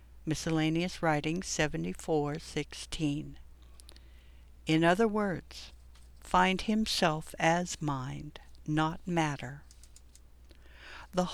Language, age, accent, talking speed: English, 60-79, American, 70 wpm